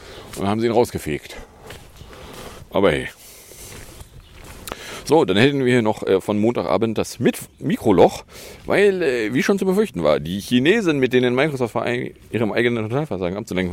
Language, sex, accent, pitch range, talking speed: English, male, German, 105-155 Hz, 150 wpm